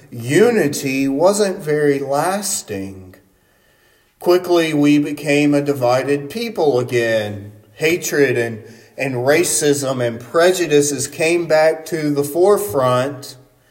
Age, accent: 40-59, American